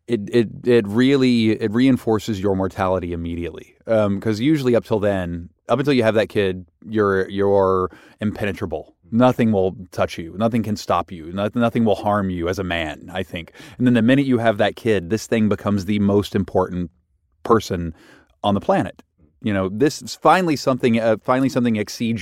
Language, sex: English, male